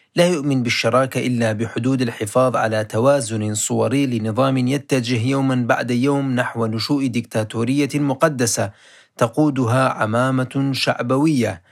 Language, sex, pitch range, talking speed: Arabic, male, 115-140 Hz, 110 wpm